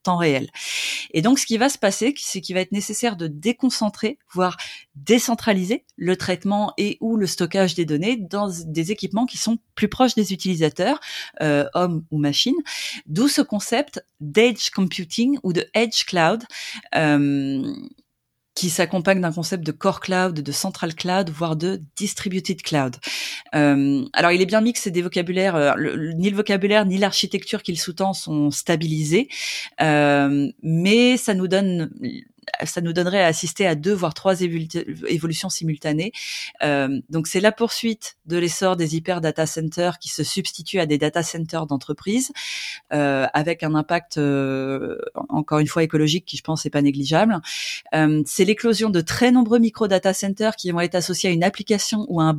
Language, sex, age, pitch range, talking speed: French, female, 20-39, 160-215 Hz, 170 wpm